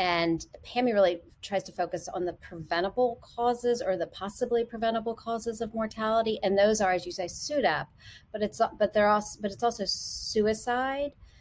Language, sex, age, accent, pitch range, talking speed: English, female, 40-59, American, 180-230 Hz, 175 wpm